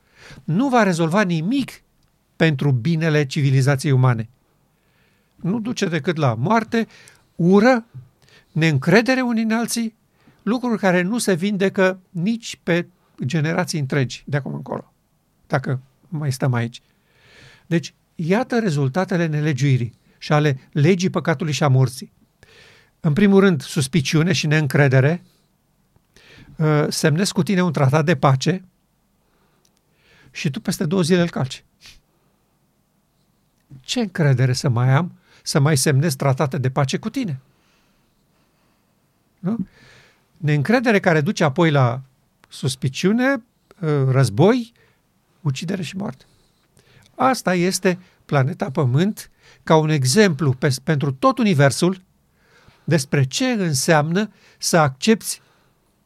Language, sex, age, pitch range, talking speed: Romanian, male, 50-69, 140-190 Hz, 110 wpm